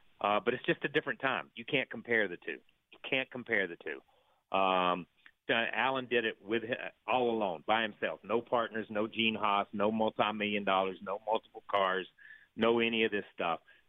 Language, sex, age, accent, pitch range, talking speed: English, male, 40-59, American, 95-115 Hz, 185 wpm